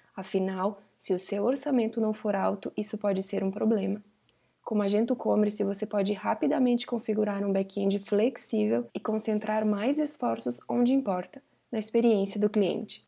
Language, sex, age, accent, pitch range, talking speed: Portuguese, female, 20-39, Brazilian, 205-230 Hz, 150 wpm